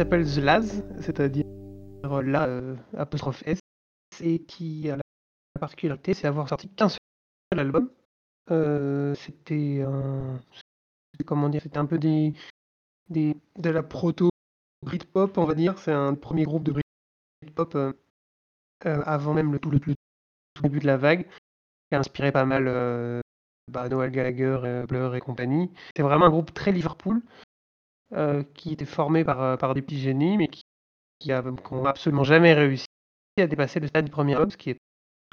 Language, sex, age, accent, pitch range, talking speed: French, male, 20-39, French, 130-155 Hz, 170 wpm